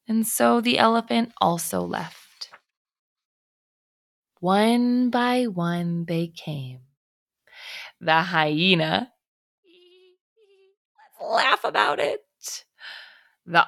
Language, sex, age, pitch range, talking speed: English, female, 20-39, 175-280 Hz, 80 wpm